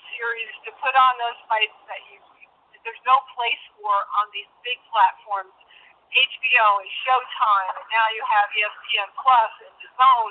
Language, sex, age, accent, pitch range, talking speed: English, female, 40-59, American, 220-275 Hz, 145 wpm